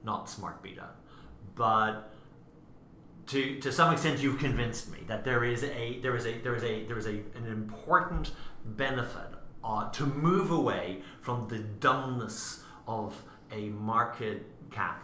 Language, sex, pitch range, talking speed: English, male, 105-135 Hz, 110 wpm